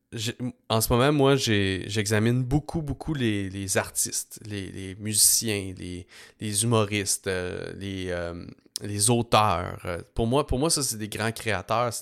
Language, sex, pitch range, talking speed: English, male, 100-120 Hz, 160 wpm